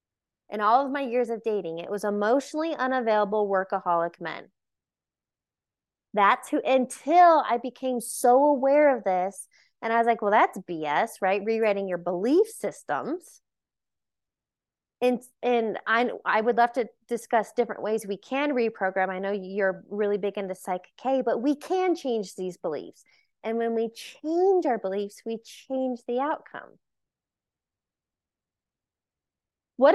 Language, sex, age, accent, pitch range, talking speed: English, female, 20-39, American, 195-255 Hz, 145 wpm